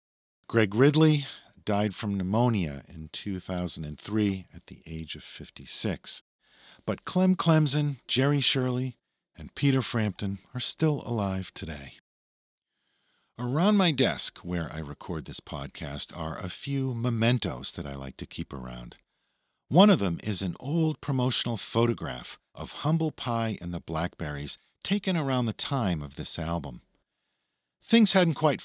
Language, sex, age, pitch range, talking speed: English, male, 50-69, 90-145 Hz, 140 wpm